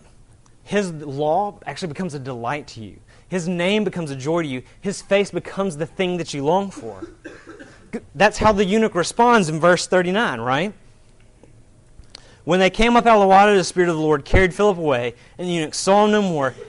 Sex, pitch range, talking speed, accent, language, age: male, 115-155 Hz, 200 wpm, American, English, 30-49